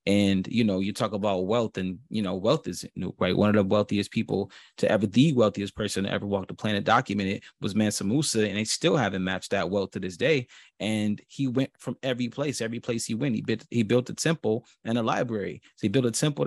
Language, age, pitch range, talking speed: English, 30-49, 100-120 Hz, 240 wpm